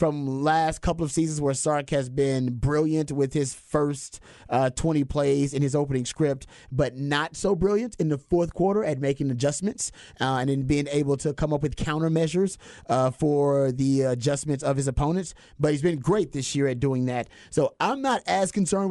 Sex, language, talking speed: male, English, 195 wpm